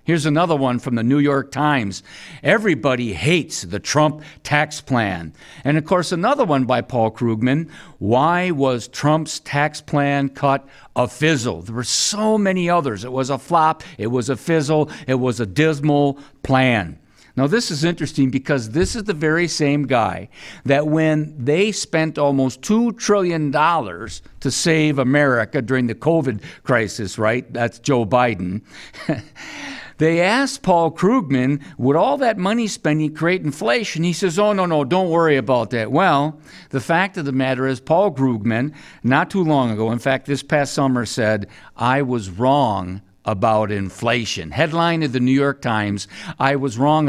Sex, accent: male, American